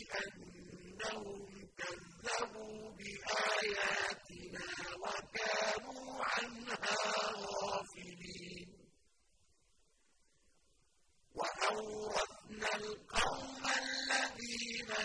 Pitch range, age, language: 205-235 Hz, 50-69, Arabic